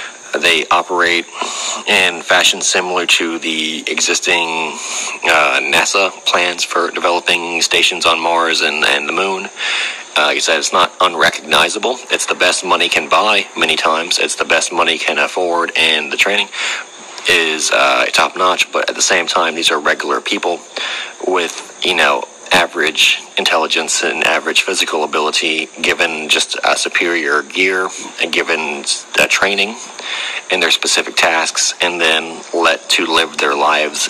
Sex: male